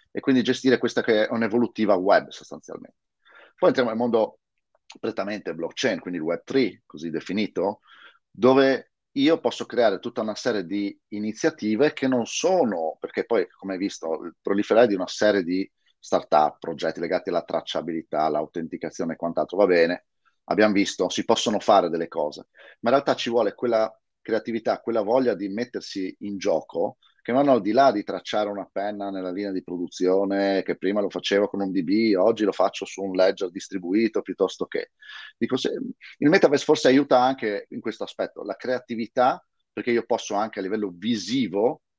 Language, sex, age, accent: Italian, male, 30-49, native